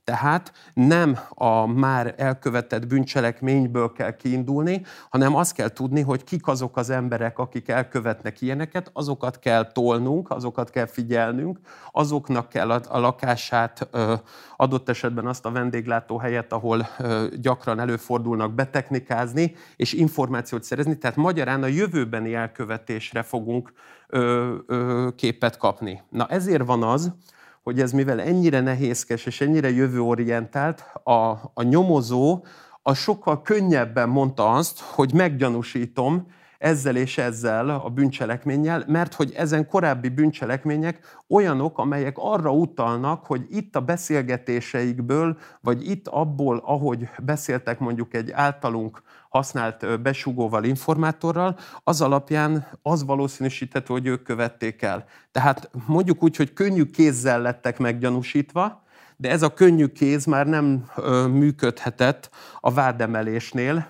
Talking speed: 120 wpm